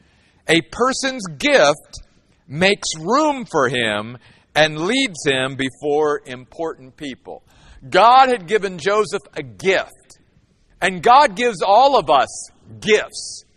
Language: English